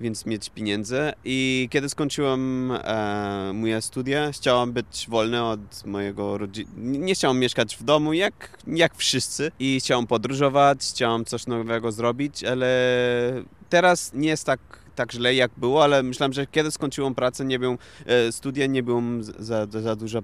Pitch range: 115-140 Hz